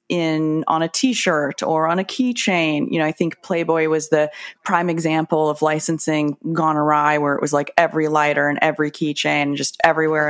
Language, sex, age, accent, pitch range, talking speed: English, female, 30-49, American, 150-180 Hz, 190 wpm